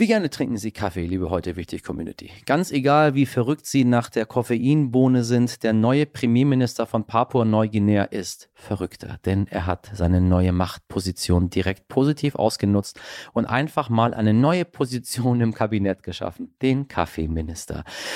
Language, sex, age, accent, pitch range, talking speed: German, male, 40-59, German, 95-135 Hz, 150 wpm